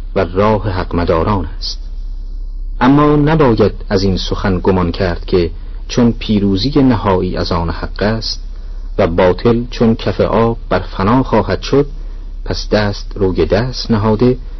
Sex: male